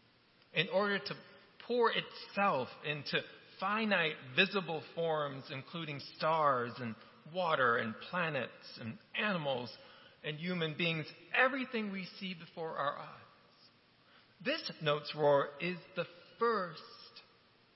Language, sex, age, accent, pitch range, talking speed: English, male, 40-59, American, 145-195 Hz, 110 wpm